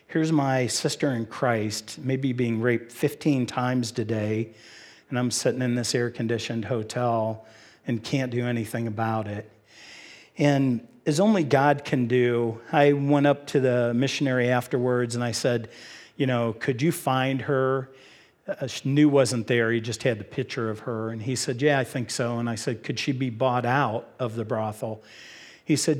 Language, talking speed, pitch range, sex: English, 180 wpm, 115-135 Hz, male